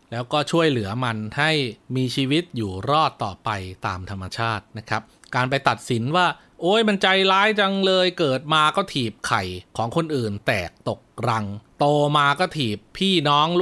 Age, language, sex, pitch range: 30-49, Thai, male, 115-150 Hz